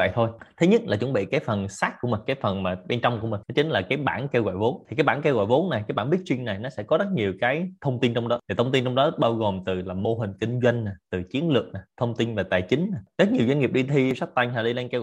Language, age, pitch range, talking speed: Vietnamese, 20-39, 110-140 Hz, 325 wpm